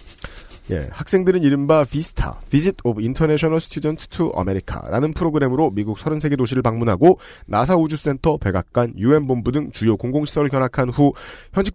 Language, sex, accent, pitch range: Korean, male, native, 115-150 Hz